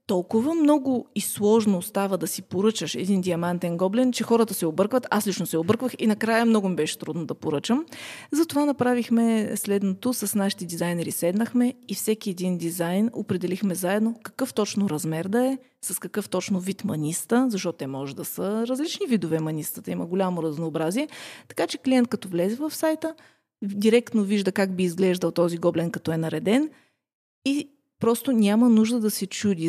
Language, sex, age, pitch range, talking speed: Bulgarian, female, 30-49, 180-235 Hz, 170 wpm